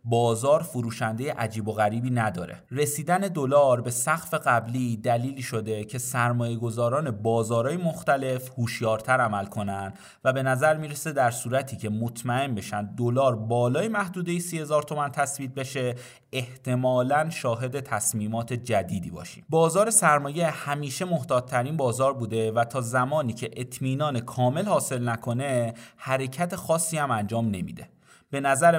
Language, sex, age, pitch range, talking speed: Persian, male, 30-49, 120-150 Hz, 130 wpm